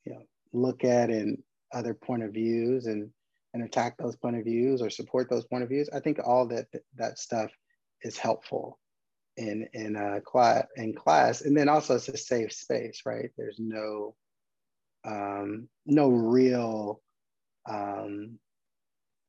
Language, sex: English, male